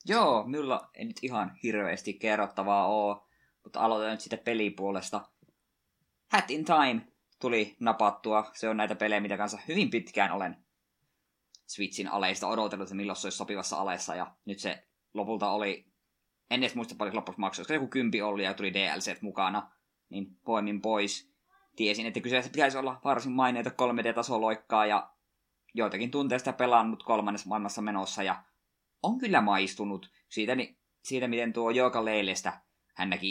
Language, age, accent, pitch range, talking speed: Finnish, 20-39, native, 100-115 Hz, 155 wpm